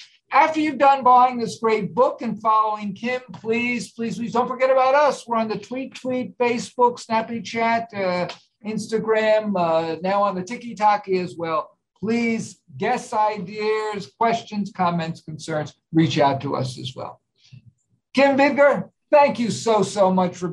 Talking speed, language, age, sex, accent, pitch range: 160 wpm, English, 50-69, male, American, 185-250 Hz